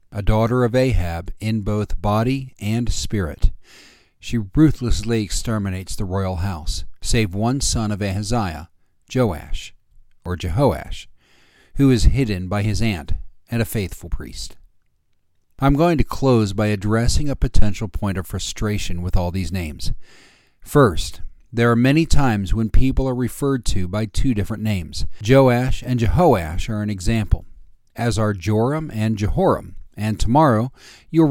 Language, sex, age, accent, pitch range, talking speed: English, male, 40-59, American, 90-120 Hz, 145 wpm